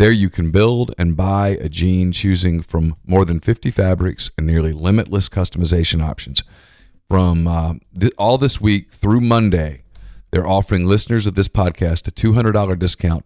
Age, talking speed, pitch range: 40-59, 165 wpm, 85-100 Hz